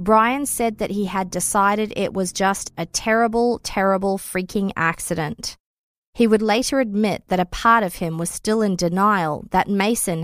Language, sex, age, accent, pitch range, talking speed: English, female, 30-49, Australian, 180-225 Hz, 170 wpm